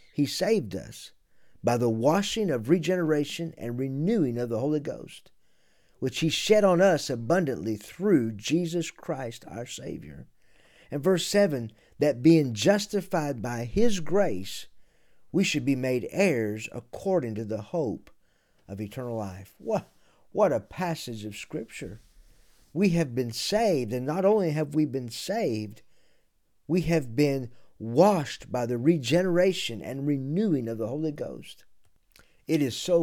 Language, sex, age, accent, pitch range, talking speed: English, male, 50-69, American, 110-165 Hz, 145 wpm